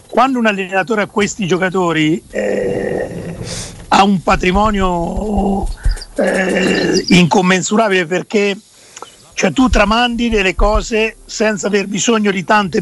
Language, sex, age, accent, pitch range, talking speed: Italian, male, 50-69, native, 180-210 Hz, 110 wpm